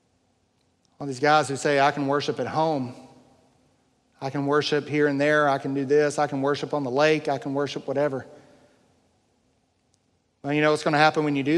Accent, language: American, English